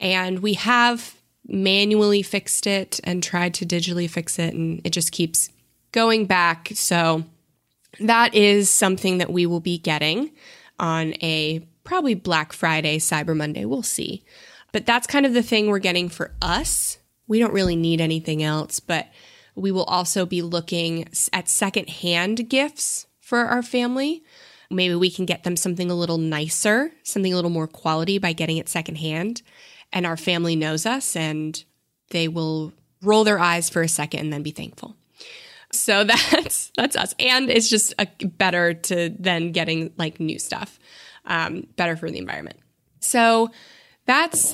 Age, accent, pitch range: 20-39, American, 165-230 Hz